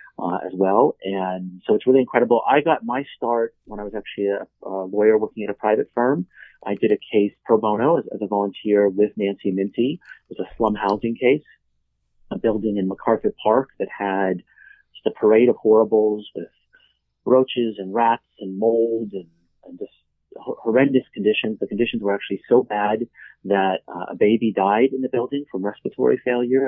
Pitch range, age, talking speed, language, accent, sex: 95-110 Hz, 40-59, 185 wpm, English, American, male